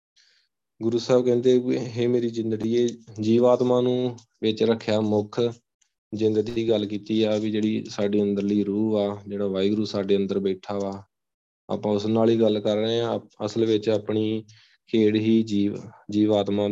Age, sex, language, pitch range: 20-39, male, Punjabi, 105-115 Hz